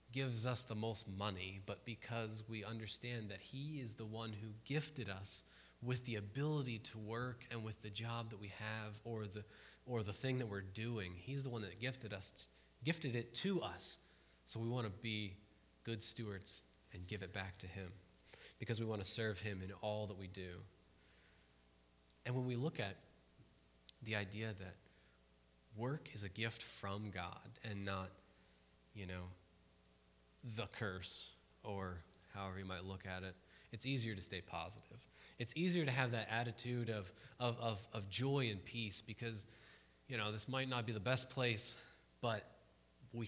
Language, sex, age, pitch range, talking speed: English, male, 20-39, 90-120 Hz, 175 wpm